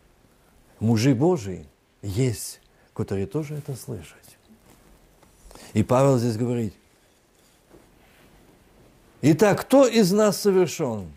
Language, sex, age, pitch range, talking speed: Russian, male, 50-69, 105-160 Hz, 85 wpm